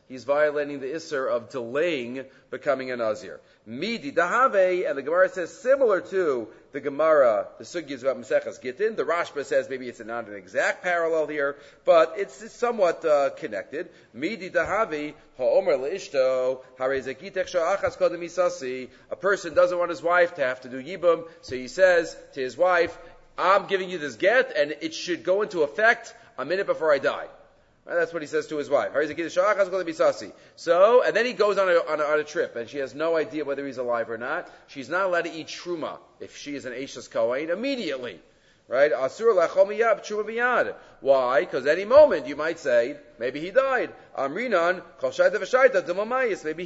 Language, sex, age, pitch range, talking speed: English, male, 40-59, 150-240 Hz, 160 wpm